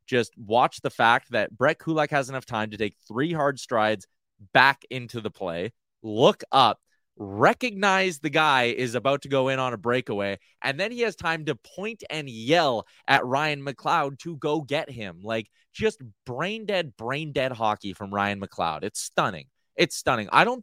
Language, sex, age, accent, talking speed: English, male, 20-39, American, 180 wpm